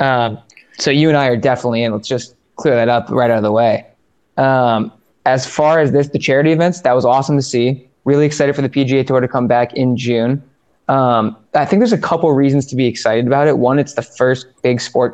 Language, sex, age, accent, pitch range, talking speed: English, male, 20-39, American, 115-140 Hz, 240 wpm